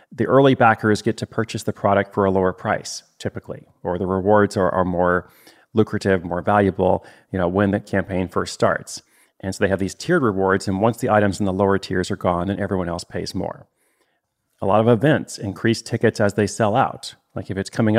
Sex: male